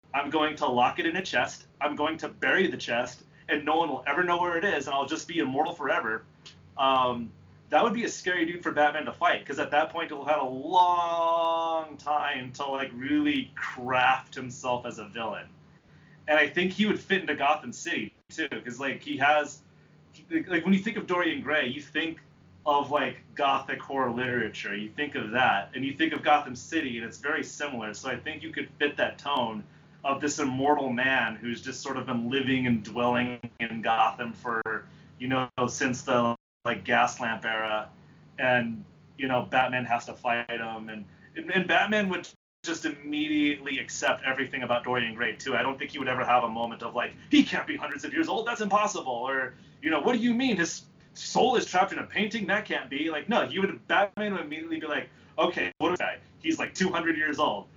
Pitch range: 125-165 Hz